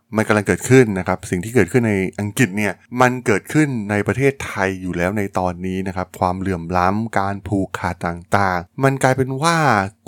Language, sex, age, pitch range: Thai, male, 20-39, 95-125 Hz